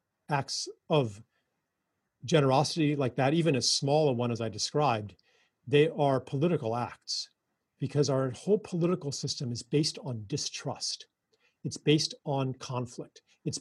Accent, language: American, English